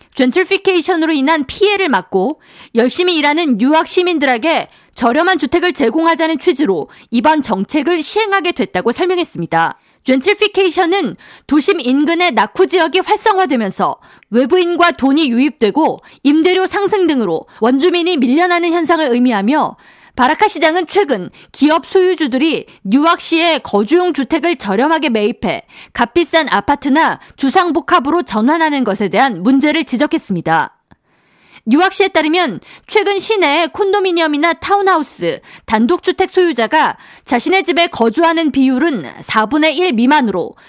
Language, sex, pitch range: Korean, female, 260-360 Hz